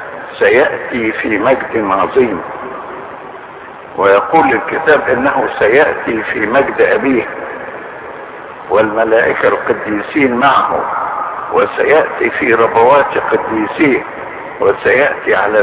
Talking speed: 75 wpm